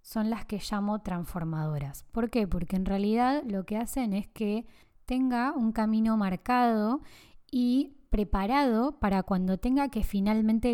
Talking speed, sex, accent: 145 wpm, female, Argentinian